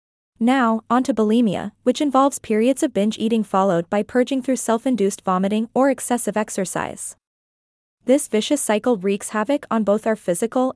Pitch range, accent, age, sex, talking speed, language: 195-250 Hz, American, 20-39, female, 155 wpm, English